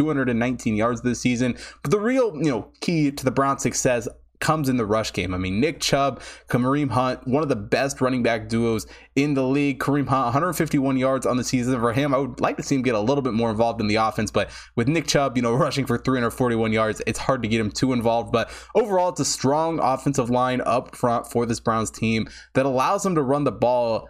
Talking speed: 240 wpm